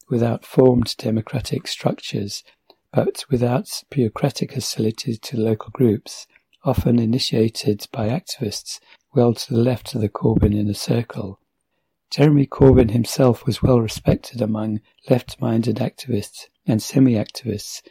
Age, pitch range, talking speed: 40-59, 110-125 Hz, 115 wpm